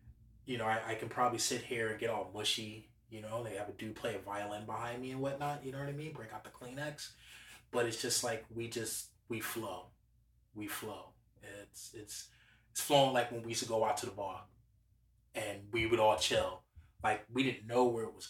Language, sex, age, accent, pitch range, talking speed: English, male, 20-39, American, 110-125 Hz, 230 wpm